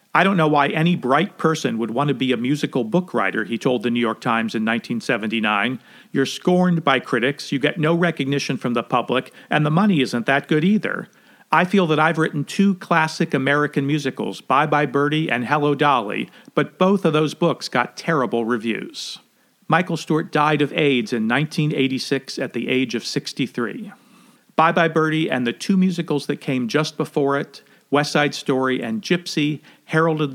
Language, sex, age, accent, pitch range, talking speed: English, male, 50-69, American, 130-160 Hz, 185 wpm